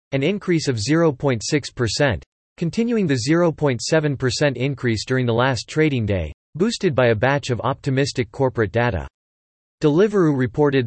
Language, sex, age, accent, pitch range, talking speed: English, male, 40-59, American, 115-150 Hz, 125 wpm